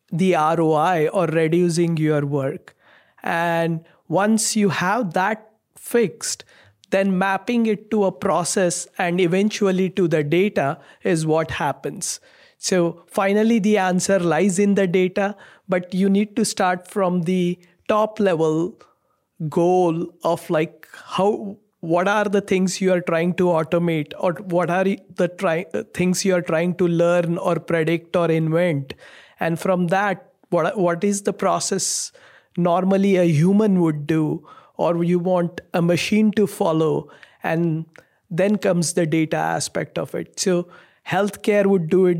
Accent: Indian